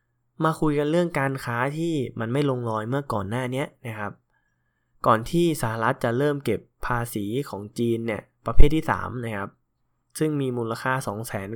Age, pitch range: 10-29, 115-135 Hz